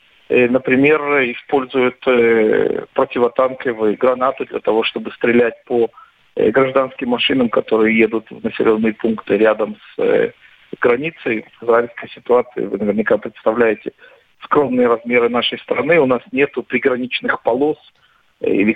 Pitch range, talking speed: 110-135 Hz, 110 wpm